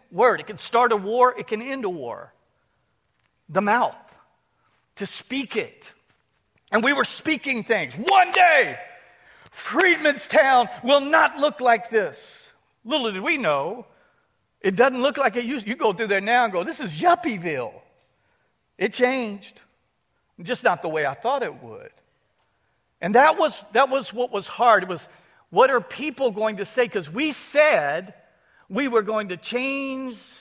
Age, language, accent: 50-69, English, American